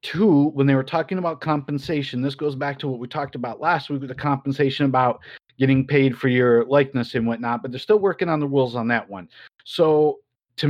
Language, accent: English, American